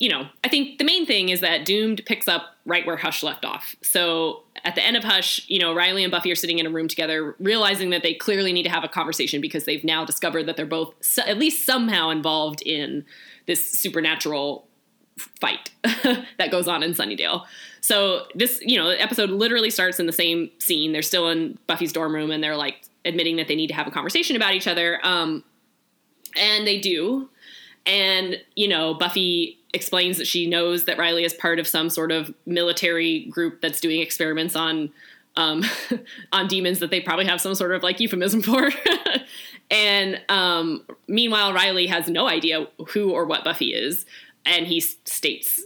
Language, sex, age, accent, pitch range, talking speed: English, female, 10-29, American, 165-205 Hz, 195 wpm